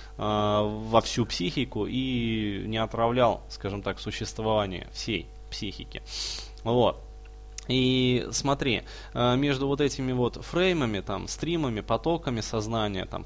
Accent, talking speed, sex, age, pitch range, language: native, 110 wpm, male, 20-39, 110-140 Hz, Russian